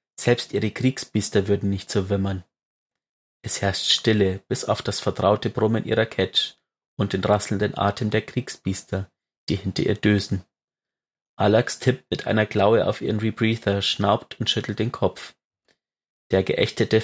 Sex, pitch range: male, 100-115 Hz